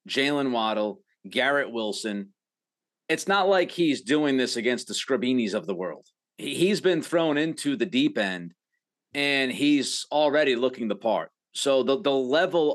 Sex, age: male, 30-49